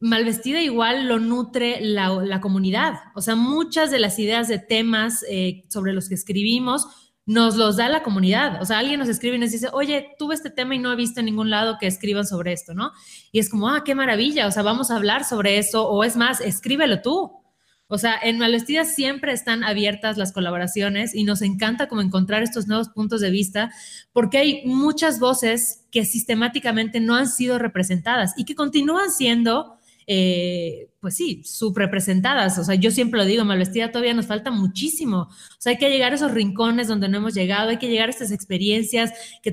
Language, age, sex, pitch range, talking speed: Spanish, 30-49, female, 200-250 Hz, 205 wpm